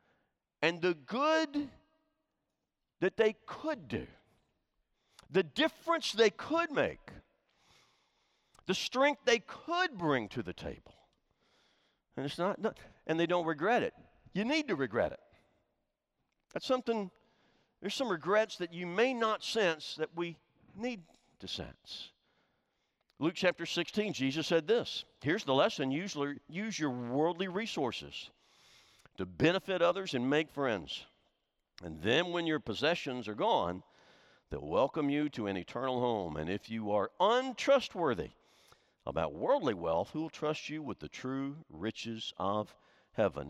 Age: 50-69